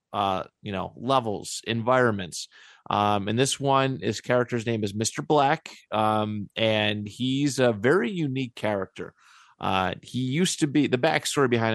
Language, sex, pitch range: English, male, 105-125 Hz